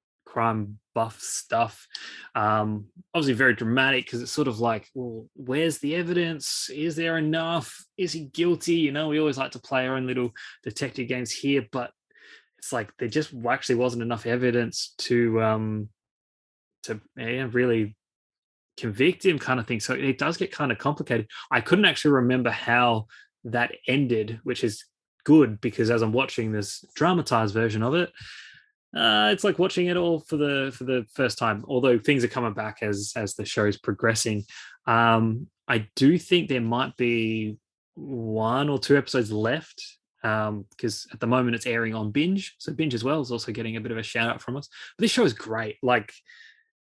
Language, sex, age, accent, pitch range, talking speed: English, male, 20-39, Australian, 115-145 Hz, 185 wpm